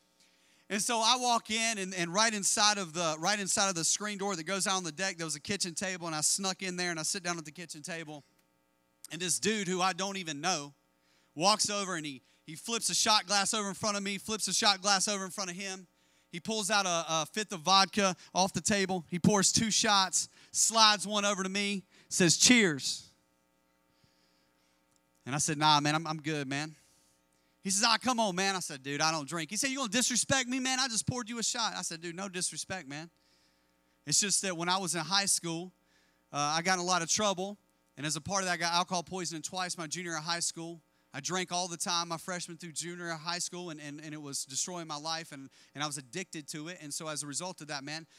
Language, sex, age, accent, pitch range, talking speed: English, male, 40-59, American, 150-195 Hz, 255 wpm